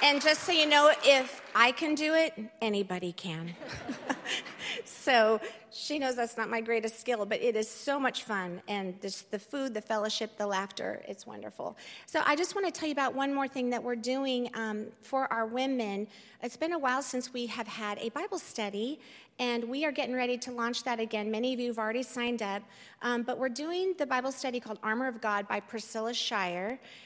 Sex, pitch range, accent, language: female, 220-265 Hz, American, English